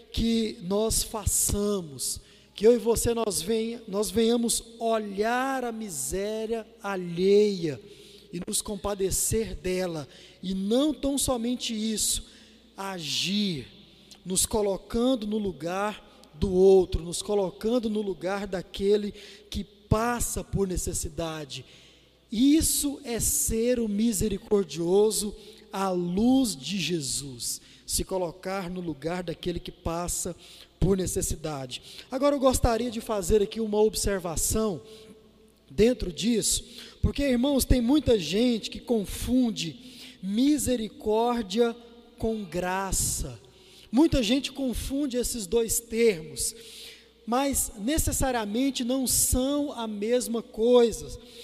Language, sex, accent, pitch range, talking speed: Portuguese, male, Brazilian, 190-235 Hz, 105 wpm